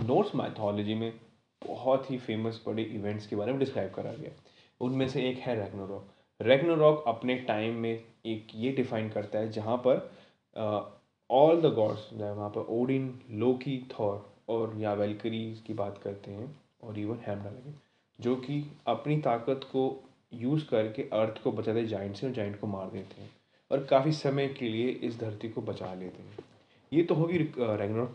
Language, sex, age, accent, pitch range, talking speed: Hindi, male, 20-39, native, 110-135 Hz, 170 wpm